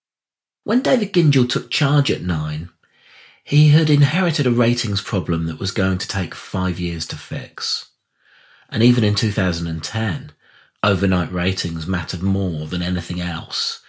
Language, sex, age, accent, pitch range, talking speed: English, male, 40-59, British, 85-120 Hz, 145 wpm